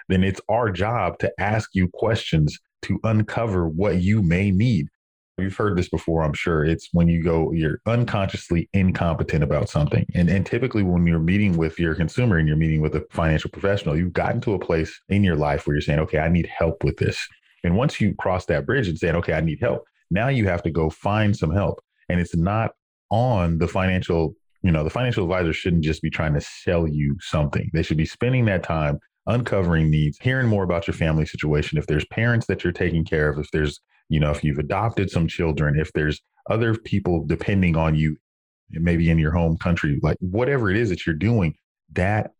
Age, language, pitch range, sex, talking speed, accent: 30-49, English, 80-95 Hz, male, 215 wpm, American